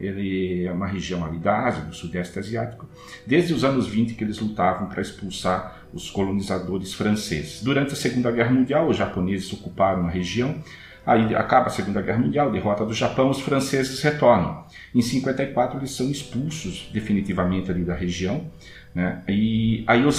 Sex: male